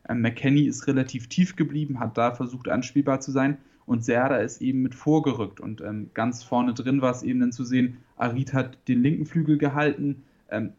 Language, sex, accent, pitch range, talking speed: German, male, German, 125-145 Hz, 195 wpm